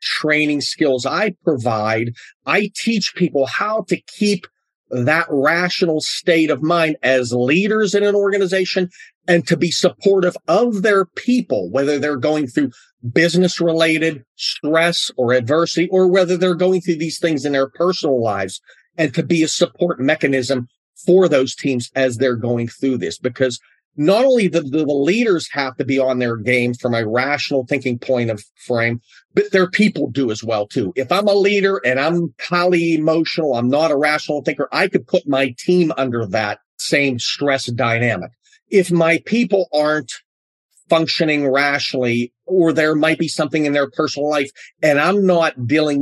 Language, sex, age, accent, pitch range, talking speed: English, male, 40-59, American, 130-175 Hz, 165 wpm